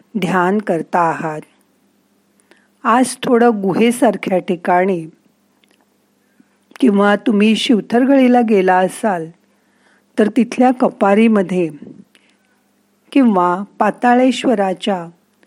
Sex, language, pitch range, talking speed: female, Marathi, 175-220 Hz, 70 wpm